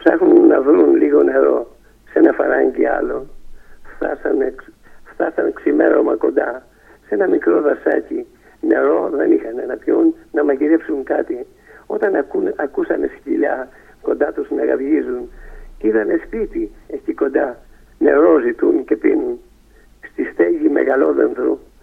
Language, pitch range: Greek, 345-395 Hz